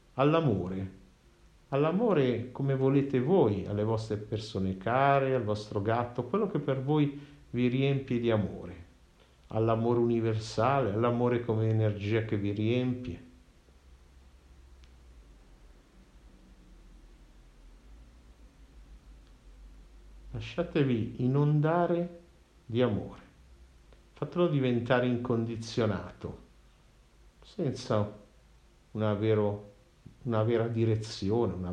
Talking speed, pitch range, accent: 80 wpm, 85-125 Hz, native